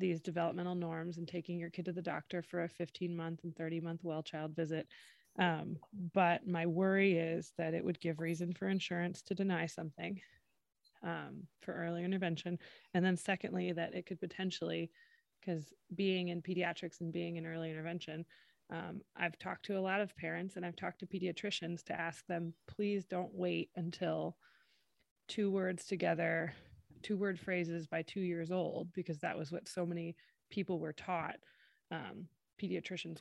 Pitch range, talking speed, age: 165-185 Hz, 175 wpm, 20-39